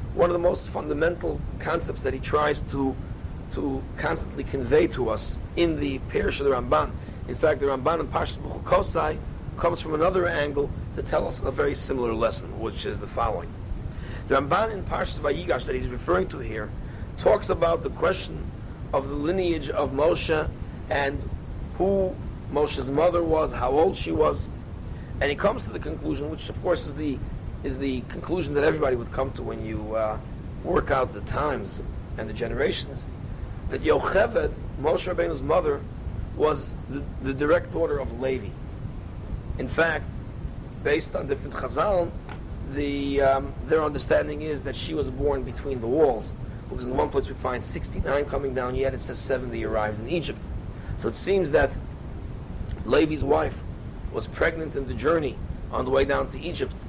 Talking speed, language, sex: 170 wpm, English, male